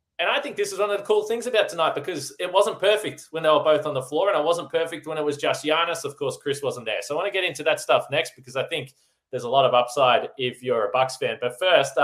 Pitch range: 130-190 Hz